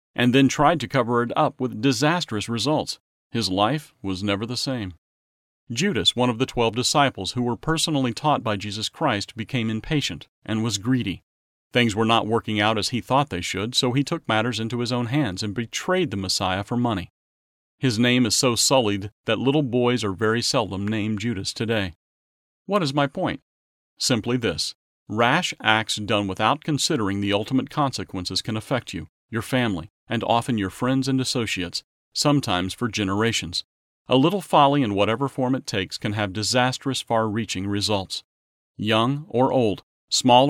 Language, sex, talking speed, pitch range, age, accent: English, male, 175 wpm, 100-130 Hz, 40-59, American